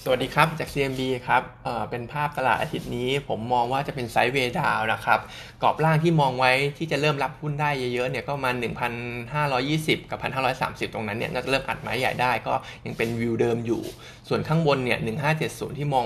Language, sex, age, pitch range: Thai, male, 20-39, 115-145 Hz